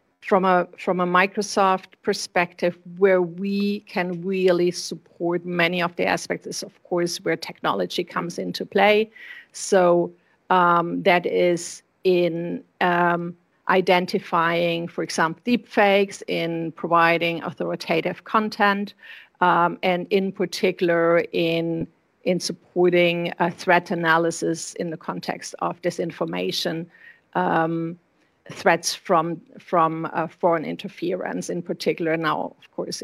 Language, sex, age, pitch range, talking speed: English, female, 50-69, 170-190 Hz, 115 wpm